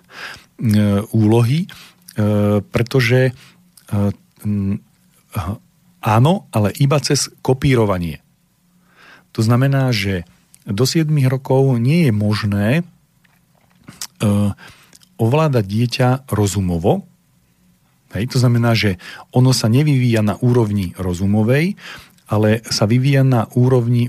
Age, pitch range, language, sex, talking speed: 40-59, 105-130 Hz, Slovak, male, 80 wpm